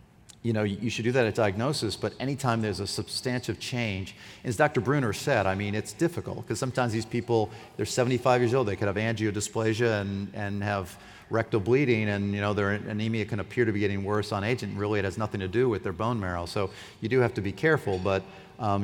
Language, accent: English, American